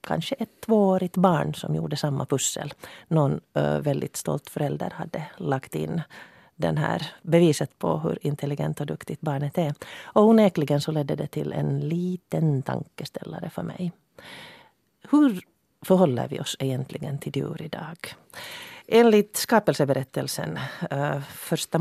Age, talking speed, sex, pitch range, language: 40-59, 125 wpm, female, 140-190 Hz, Finnish